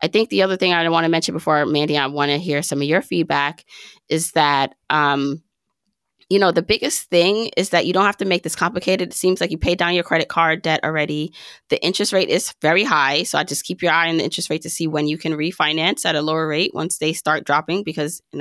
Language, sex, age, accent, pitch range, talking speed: English, female, 20-39, American, 150-180 Hz, 260 wpm